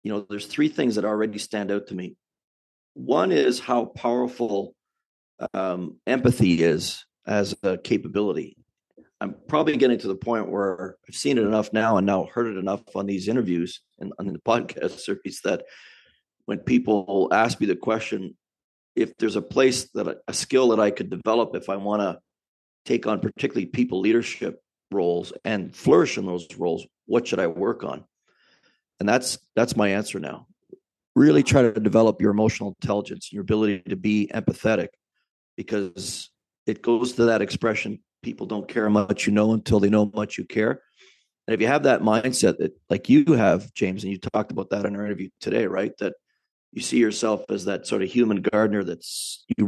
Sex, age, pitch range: male, 40-59, 100-115 Hz